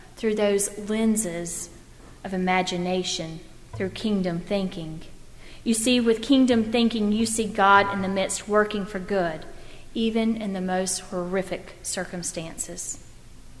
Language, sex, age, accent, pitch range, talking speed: English, female, 40-59, American, 180-215 Hz, 125 wpm